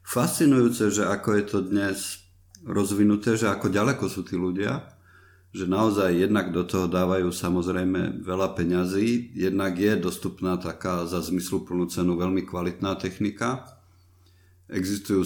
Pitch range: 90-100 Hz